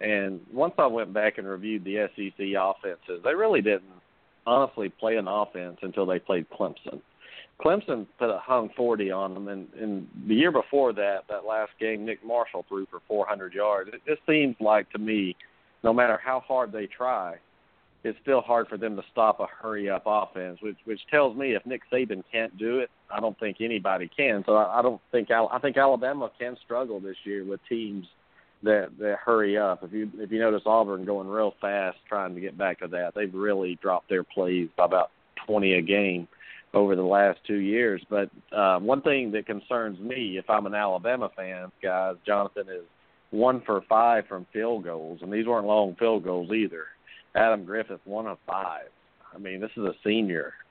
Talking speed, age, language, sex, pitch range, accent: 200 wpm, 50-69, English, male, 95-110 Hz, American